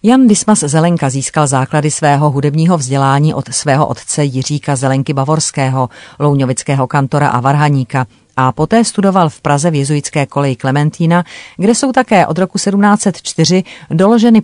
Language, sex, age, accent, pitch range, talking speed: Czech, female, 40-59, native, 135-165 Hz, 140 wpm